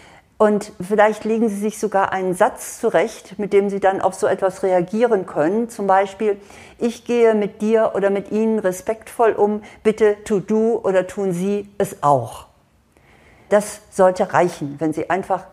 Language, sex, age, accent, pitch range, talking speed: German, female, 50-69, German, 185-225 Hz, 165 wpm